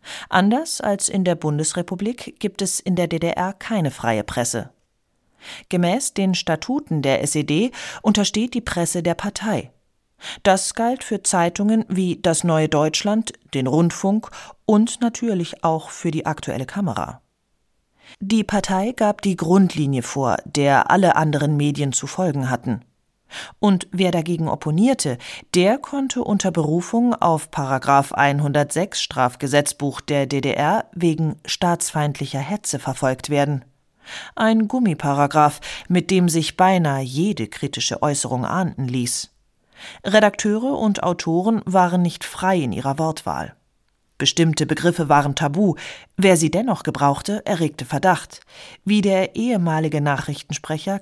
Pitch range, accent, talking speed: 145-200 Hz, German, 125 wpm